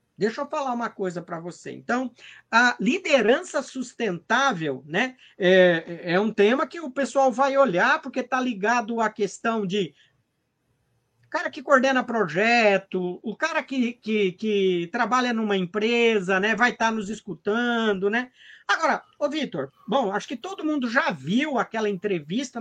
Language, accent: Portuguese, Brazilian